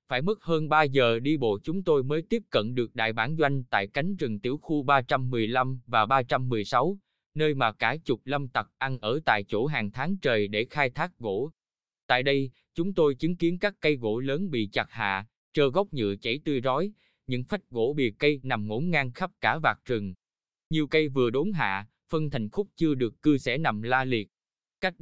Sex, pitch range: male, 120-155 Hz